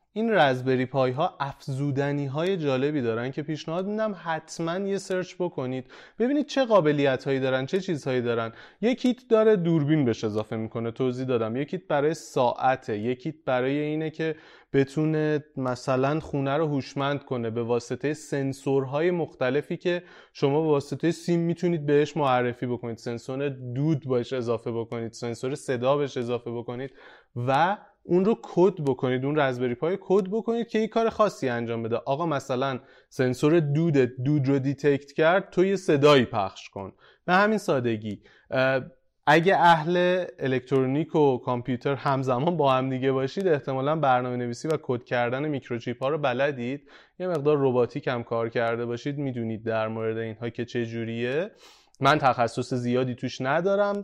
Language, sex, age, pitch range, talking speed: Persian, male, 30-49, 125-170 Hz, 150 wpm